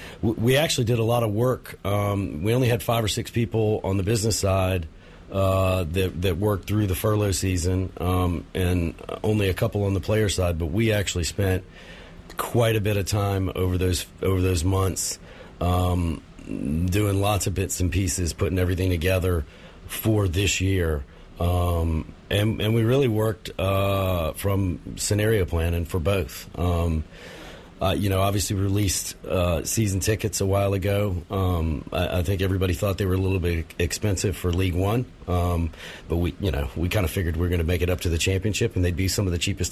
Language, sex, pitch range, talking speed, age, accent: English, male, 90-105 Hz, 195 wpm, 40-59, American